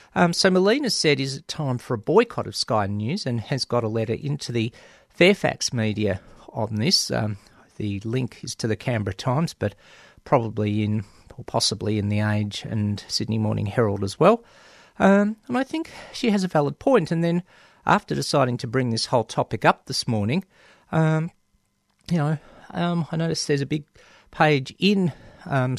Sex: male